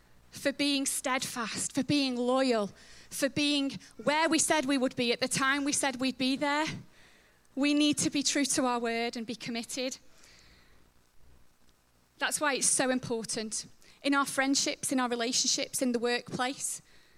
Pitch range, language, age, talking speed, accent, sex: 225-285 Hz, English, 30-49, 165 wpm, British, female